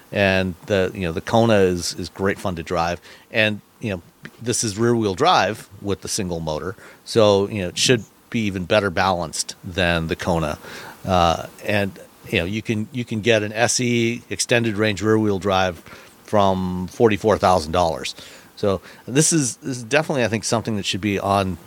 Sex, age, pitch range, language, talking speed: male, 50-69, 90-110 Hz, English, 195 wpm